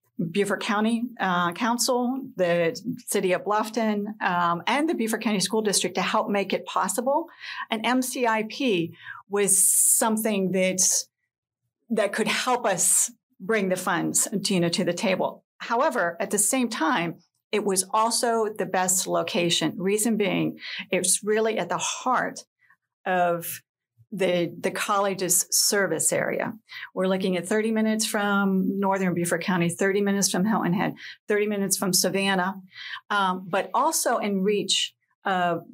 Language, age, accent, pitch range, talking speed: English, 50-69, American, 180-220 Hz, 145 wpm